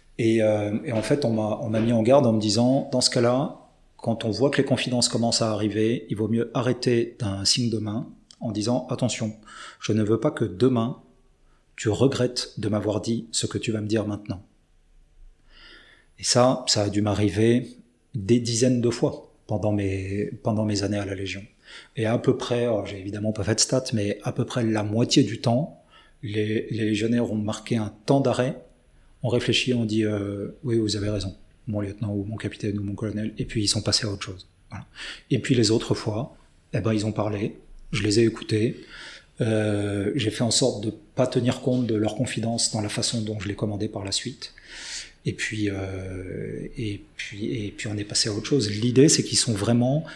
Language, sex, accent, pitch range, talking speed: French, male, French, 105-125 Hz, 215 wpm